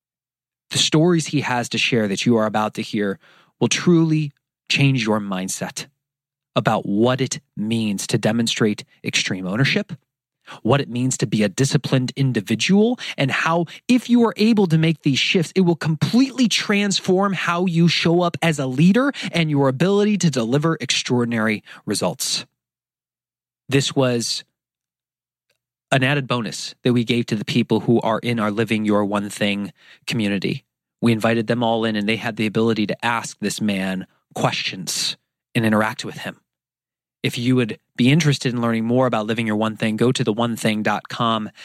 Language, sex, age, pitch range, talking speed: English, male, 30-49, 110-145 Hz, 165 wpm